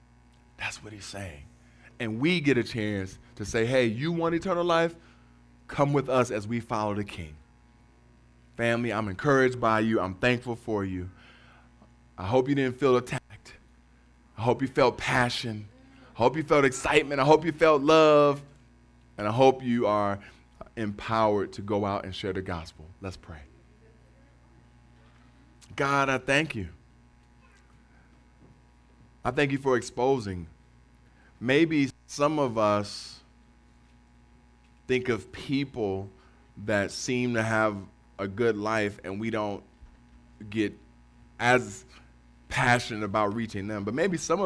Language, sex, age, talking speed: English, male, 20-39, 140 wpm